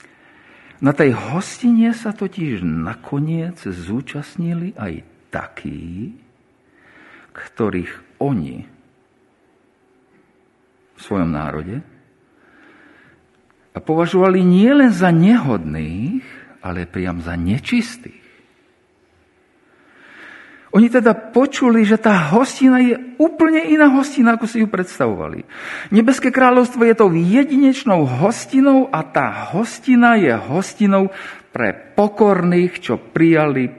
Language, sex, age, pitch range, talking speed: Slovak, male, 50-69, 155-250 Hz, 90 wpm